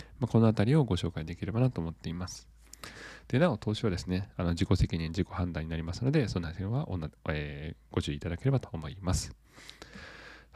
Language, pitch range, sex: Japanese, 85-125 Hz, male